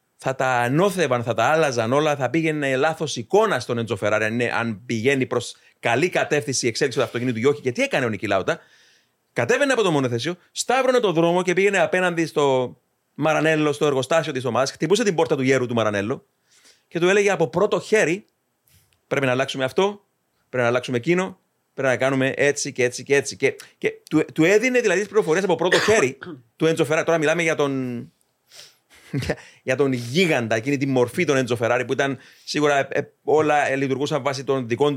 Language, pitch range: Greek, 130-165 Hz